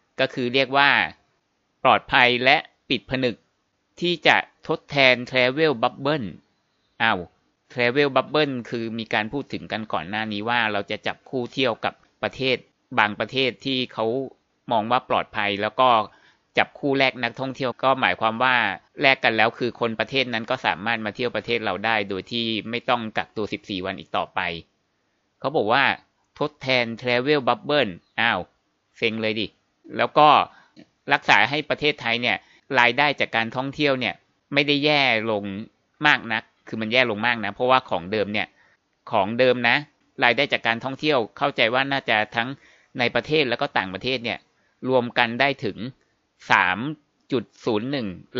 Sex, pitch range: male, 110-135 Hz